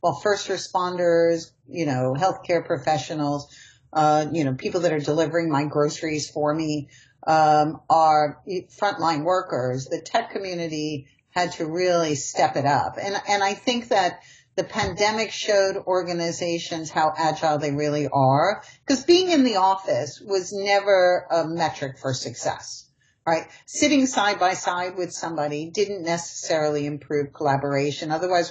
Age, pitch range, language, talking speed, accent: 50-69, 150-180 Hz, English, 145 wpm, American